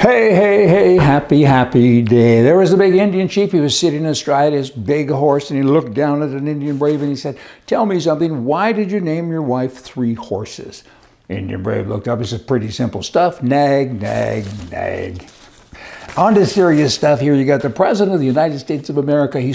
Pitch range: 120-160 Hz